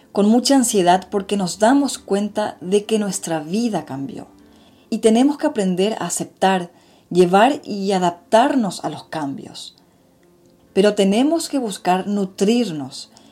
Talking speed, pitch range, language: 130 wpm, 165-220 Hz, Spanish